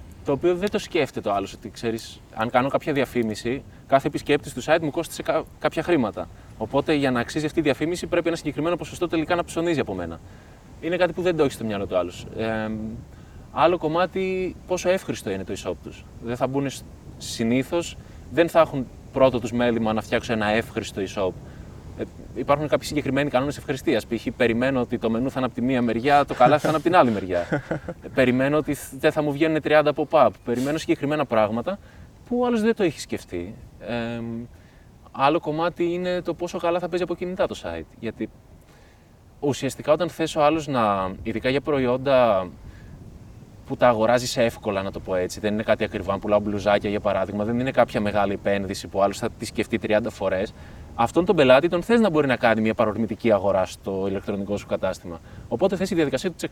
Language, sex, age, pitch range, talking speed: Greek, male, 20-39, 105-155 Hz, 170 wpm